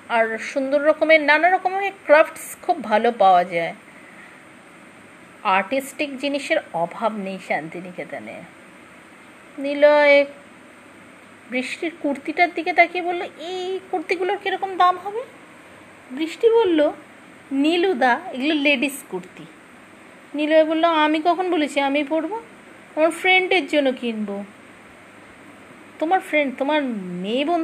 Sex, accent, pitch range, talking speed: female, Indian, 245-340 Hz, 65 wpm